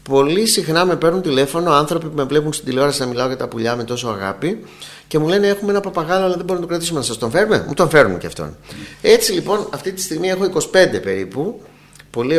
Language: Greek